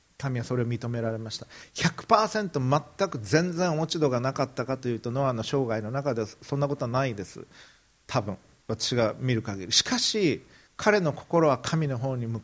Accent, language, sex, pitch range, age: native, Japanese, male, 110-165 Hz, 40-59